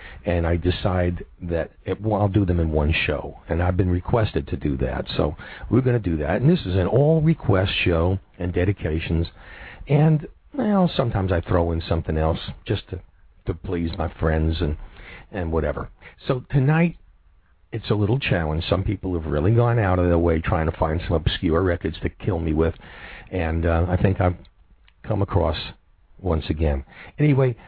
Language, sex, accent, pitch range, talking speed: English, male, American, 80-105 Hz, 185 wpm